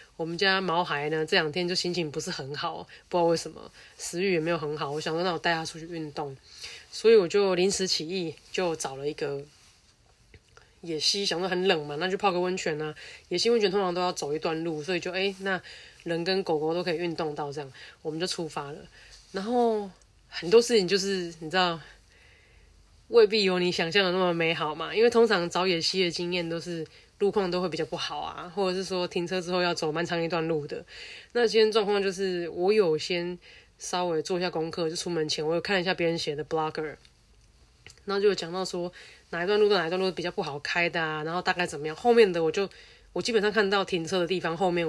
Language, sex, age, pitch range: Chinese, female, 20-39, 160-190 Hz